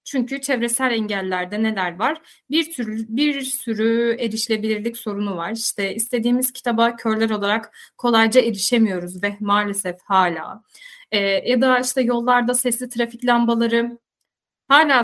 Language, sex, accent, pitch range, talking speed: Turkish, female, native, 210-255 Hz, 125 wpm